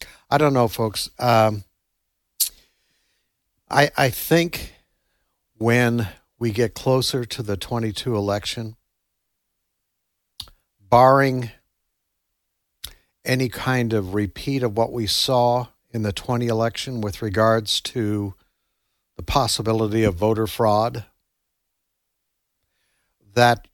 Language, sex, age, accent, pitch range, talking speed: English, male, 60-79, American, 100-120 Hz, 95 wpm